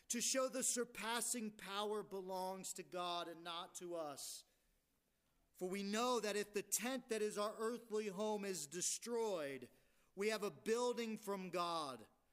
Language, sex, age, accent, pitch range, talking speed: English, male, 40-59, American, 185-235 Hz, 155 wpm